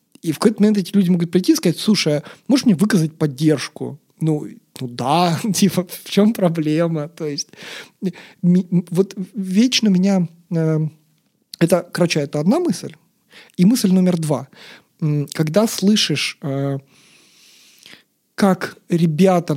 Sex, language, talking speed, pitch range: male, Russian, 120 wpm, 160-200 Hz